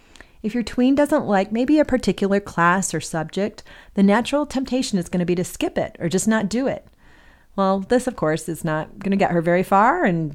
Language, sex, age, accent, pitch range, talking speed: English, female, 30-49, American, 165-215 Hz, 225 wpm